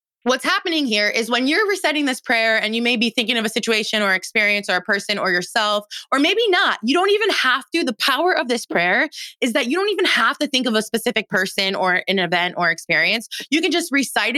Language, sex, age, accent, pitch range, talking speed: English, female, 20-39, American, 215-285 Hz, 240 wpm